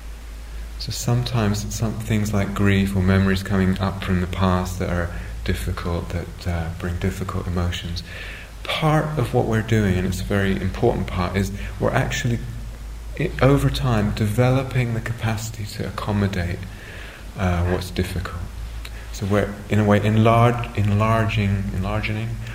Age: 30-49